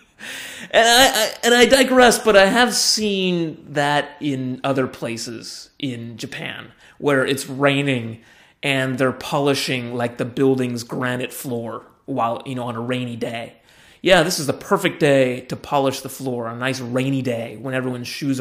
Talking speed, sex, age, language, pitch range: 170 wpm, male, 30-49, English, 125-170 Hz